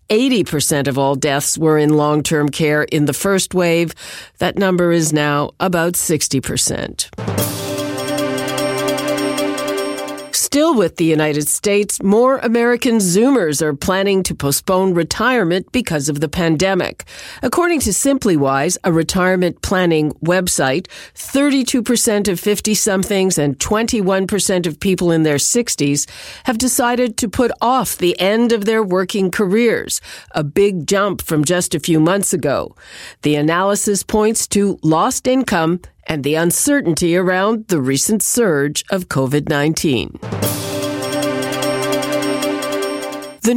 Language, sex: English, female